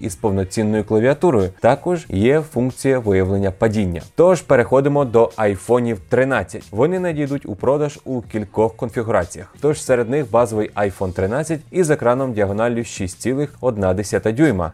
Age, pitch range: 20-39, 100-140 Hz